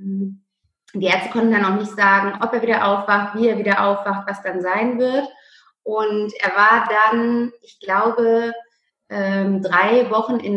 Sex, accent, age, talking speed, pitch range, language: female, German, 30-49, 160 wpm, 190-230 Hz, German